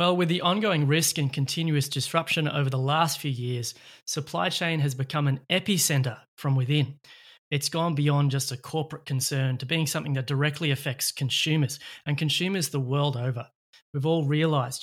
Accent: Australian